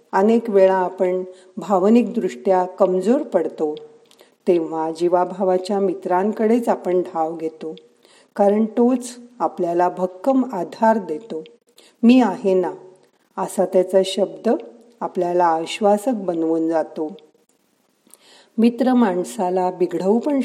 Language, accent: Marathi, native